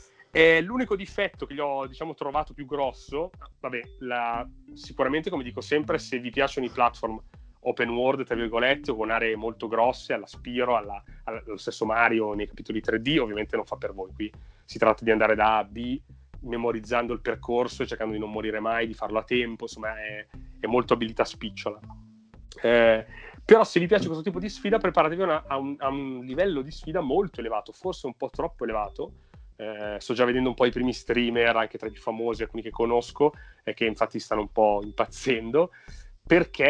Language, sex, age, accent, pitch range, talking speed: Italian, male, 30-49, native, 110-135 Hz, 200 wpm